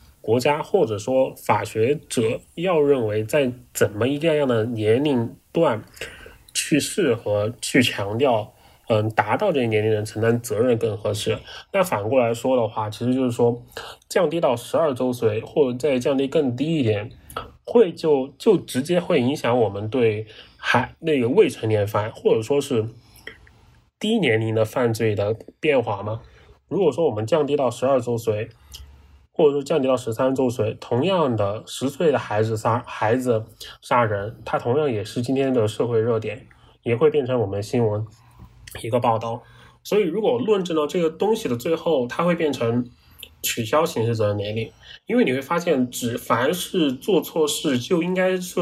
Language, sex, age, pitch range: Chinese, male, 20-39, 110-140 Hz